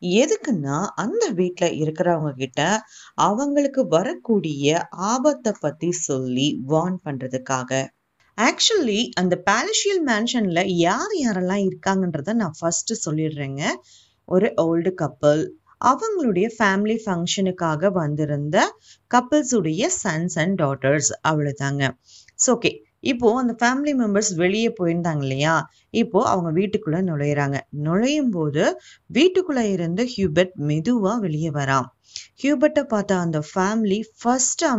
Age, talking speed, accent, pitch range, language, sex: 30-49, 100 wpm, native, 155-230 Hz, Tamil, female